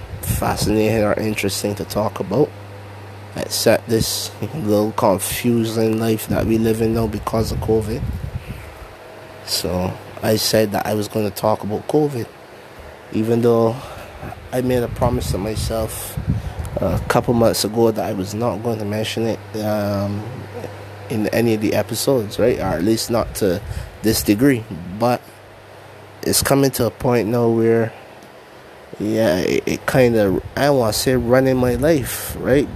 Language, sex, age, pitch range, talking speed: English, male, 20-39, 100-120 Hz, 155 wpm